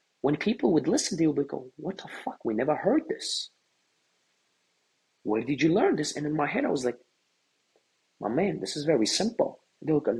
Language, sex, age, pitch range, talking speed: English, male, 30-49, 130-185 Hz, 220 wpm